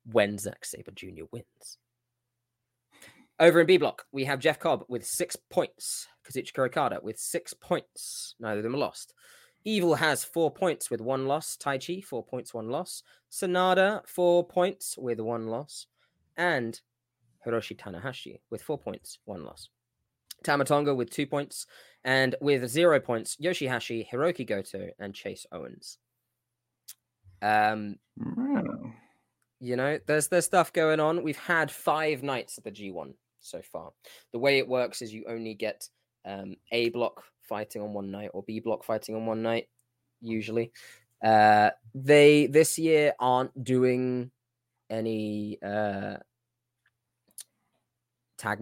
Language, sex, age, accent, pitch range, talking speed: English, male, 20-39, British, 110-145 Hz, 145 wpm